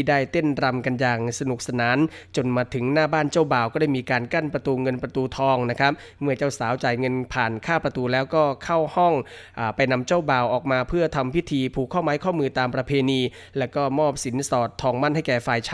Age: 20-39